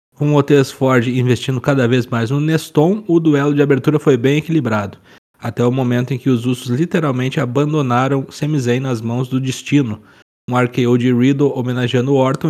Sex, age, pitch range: male, 20-39, 120-145 Hz